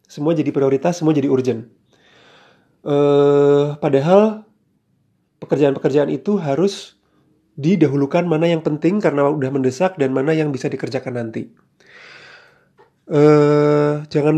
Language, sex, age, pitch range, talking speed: English, male, 30-49, 135-170 Hz, 110 wpm